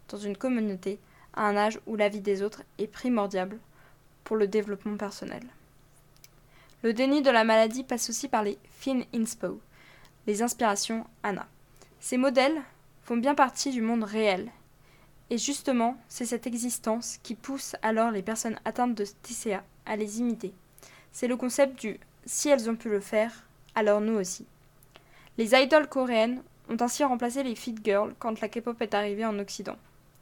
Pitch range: 205-245 Hz